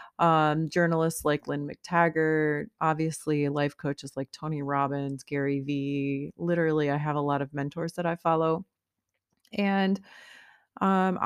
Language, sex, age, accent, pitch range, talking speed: English, female, 30-49, American, 150-175 Hz, 135 wpm